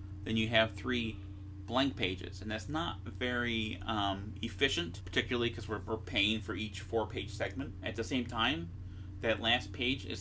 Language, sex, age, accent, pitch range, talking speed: English, male, 30-49, American, 95-110 Hz, 170 wpm